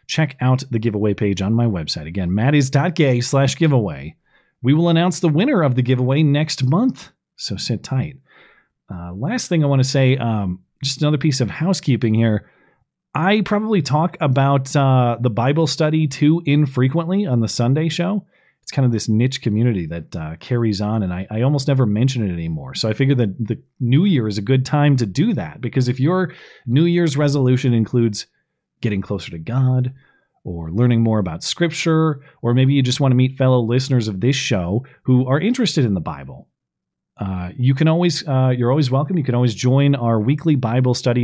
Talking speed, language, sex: 195 wpm, English, male